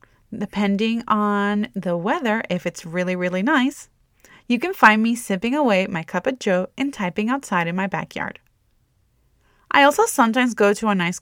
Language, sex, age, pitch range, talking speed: English, female, 20-39, 200-280 Hz, 170 wpm